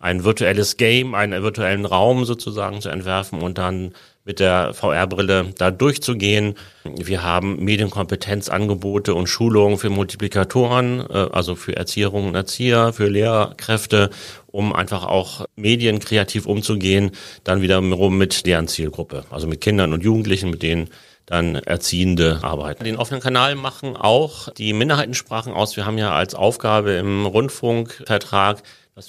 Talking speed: 140 wpm